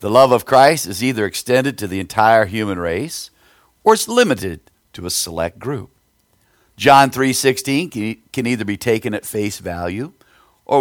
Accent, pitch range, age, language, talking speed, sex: American, 95-130 Hz, 50-69, English, 160 wpm, male